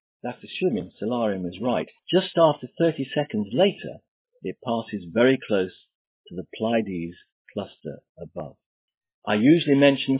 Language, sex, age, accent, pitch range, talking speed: English, male, 50-69, British, 115-145 Hz, 130 wpm